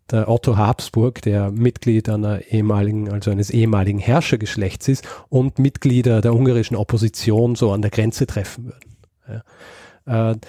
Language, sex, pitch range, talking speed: German, male, 110-130 Hz, 130 wpm